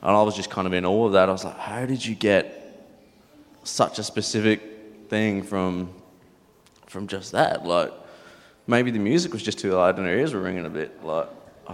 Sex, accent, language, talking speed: male, Australian, English, 210 wpm